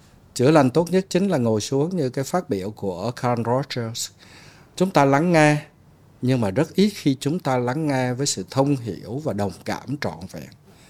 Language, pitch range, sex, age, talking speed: Vietnamese, 110-155 Hz, male, 60-79, 205 wpm